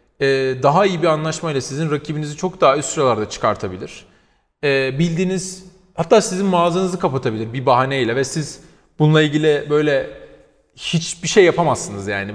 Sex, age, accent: male, 30-49, native